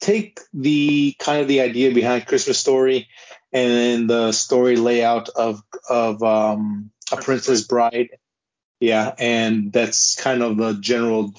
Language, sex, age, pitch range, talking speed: English, male, 20-39, 110-125 Hz, 140 wpm